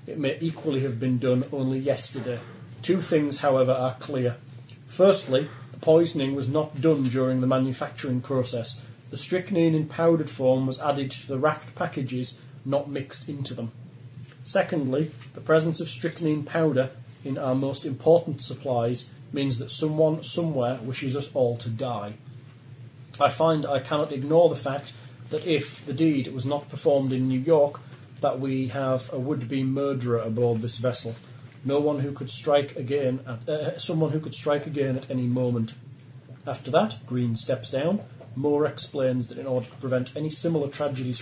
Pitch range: 125-145 Hz